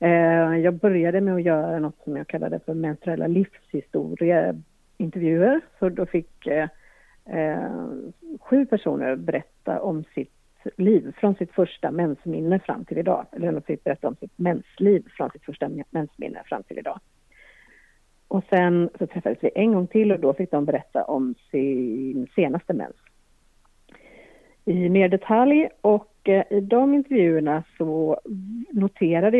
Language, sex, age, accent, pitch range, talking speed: English, female, 50-69, Swedish, 160-205 Hz, 145 wpm